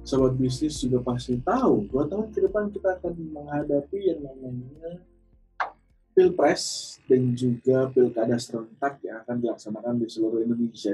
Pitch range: 120-145 Hz